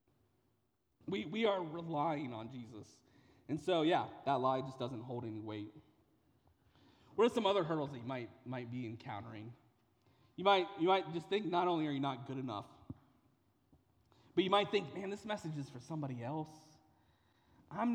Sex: male